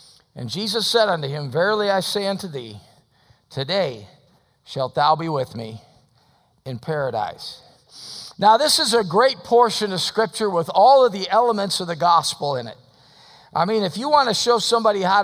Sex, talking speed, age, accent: male, 175 wpm, 50-69, American